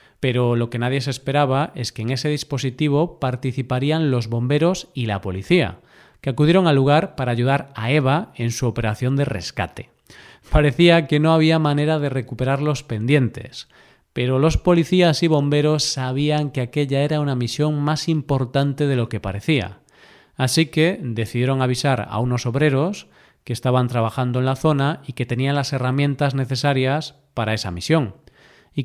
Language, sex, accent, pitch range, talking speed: Spanish, male, Spanish, 120-150 Hz, 165 wpm